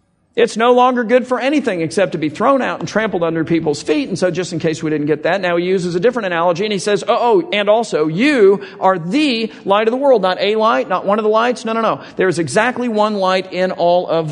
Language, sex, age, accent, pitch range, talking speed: English, male, 50-69, American, 155-205 Hz, 270 wpm